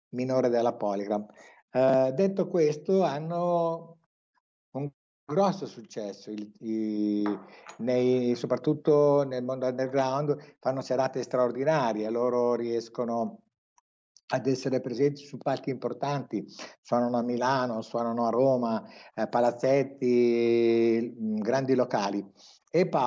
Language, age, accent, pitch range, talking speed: Italian, 60-79, native, 115-135 Hz, 90 wpm